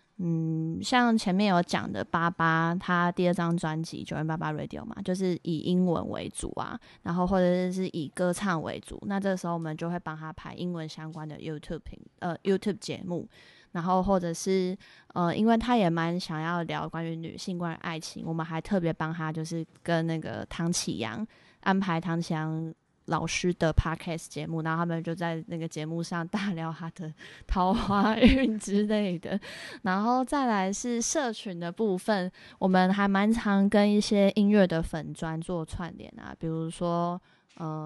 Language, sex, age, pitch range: Chinese, female, 20-39, 165-190 Hz